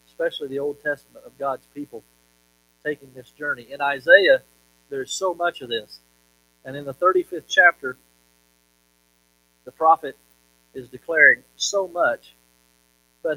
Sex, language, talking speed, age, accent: male, English, 130 wpm, 40-59, American